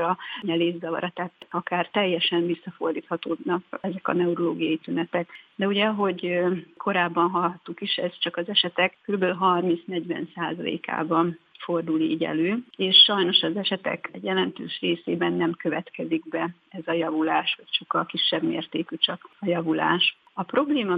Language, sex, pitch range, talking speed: Hungarian, female, 165-185 Hz, 135 wpm